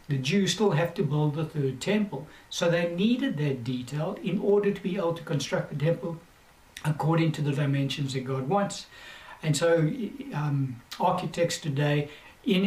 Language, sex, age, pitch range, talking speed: English, male, 60-79, 150-185 Hz, 170 wpm